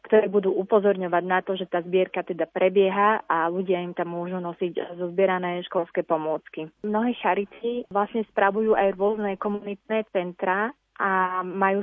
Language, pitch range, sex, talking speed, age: Slovak, 190-210 Hz, female, 145 wpm, 30-49